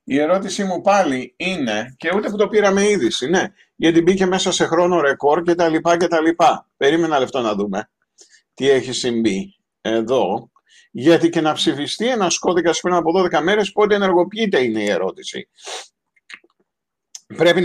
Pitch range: 145-190 Hz